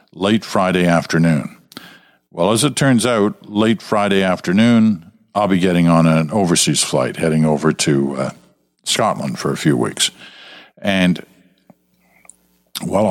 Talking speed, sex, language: 135 wpm, male, English